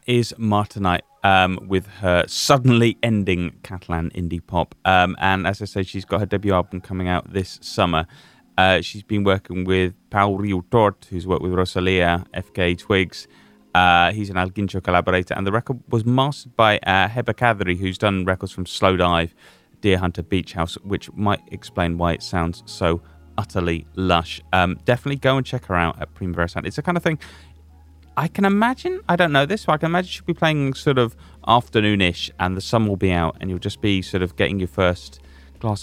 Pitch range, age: 90-115 Hz, 30-49